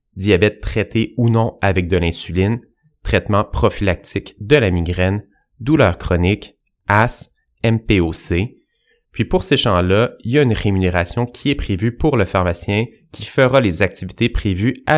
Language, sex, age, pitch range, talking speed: French, male, 30-49, 95-130 Hz, 150 wpm